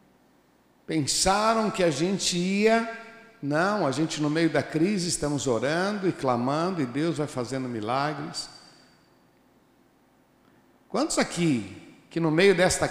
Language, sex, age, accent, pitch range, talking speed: Portuguese, male, 60-79, Brazilian, 125-175 Hz, 125 wpm